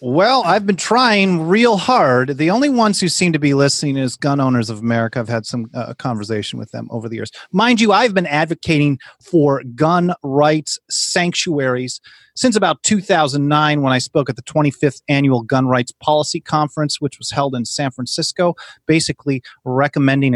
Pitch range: 120-150 Hz